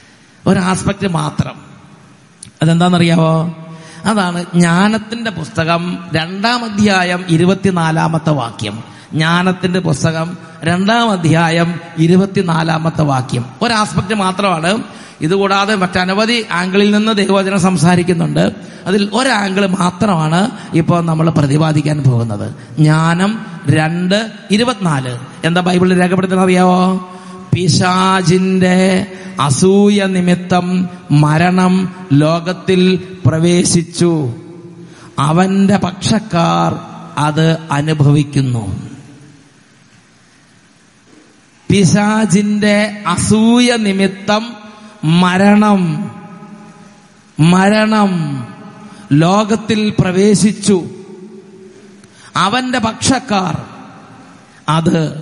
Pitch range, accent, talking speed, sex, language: 160-200 Hz, Indian, 50 wpm, male, English